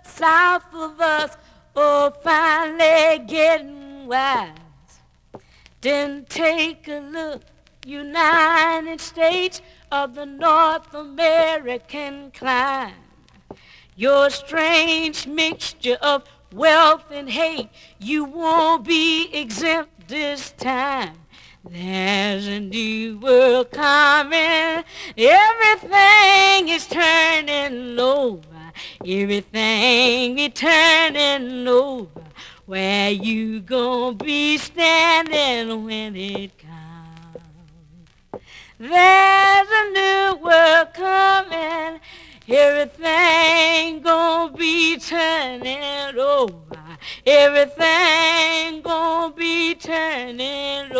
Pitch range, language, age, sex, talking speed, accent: 235-325 Hz, English, 40-59, female, 80 wpm, American